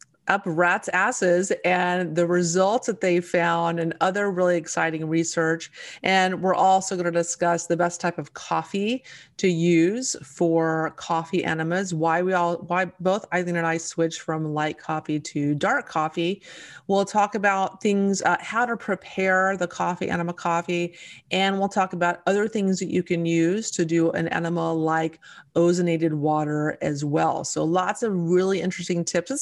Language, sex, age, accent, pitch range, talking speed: English, female, 30-49, American, 165-190 Hz, 170 wpm